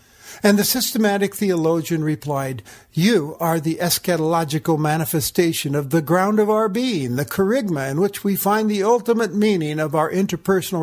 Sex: male